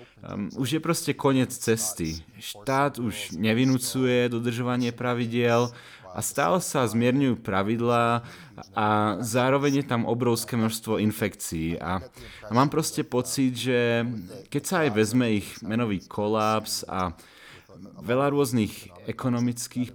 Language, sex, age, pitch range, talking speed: Slovak, male, 30-49, 110-130 Hz, 120 wpm